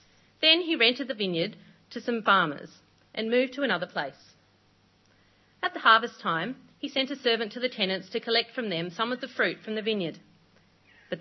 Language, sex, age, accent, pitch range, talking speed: English, female, 40-59, Australian, 165-225 Hz, 195 wpm